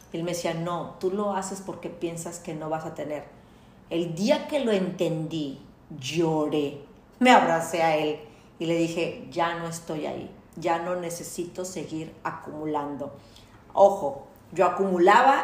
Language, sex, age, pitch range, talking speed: Spanish, female, 40-59, 165-210 Hz, 150 wpm